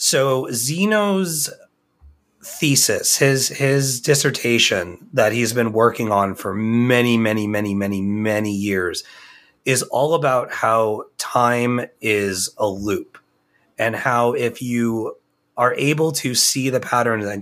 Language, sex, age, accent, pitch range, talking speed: English, male, 30-49, American, 110-145 Hz, 125 wpm